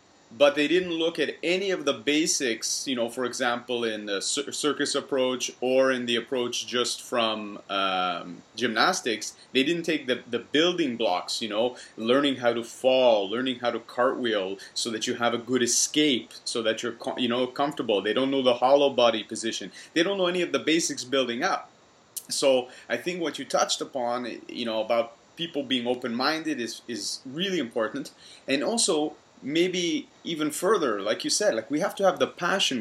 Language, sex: English, male